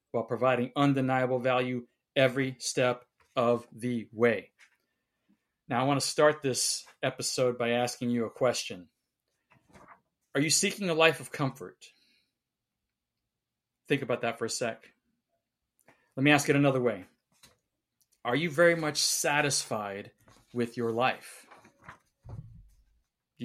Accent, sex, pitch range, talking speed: American, male, 120-135 Hz, 125 wpm